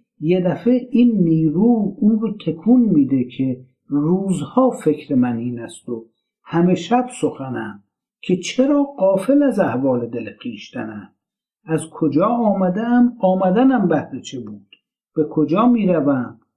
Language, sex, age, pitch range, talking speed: Persian, male, 60-79, 155-200 Hz, 125 wpm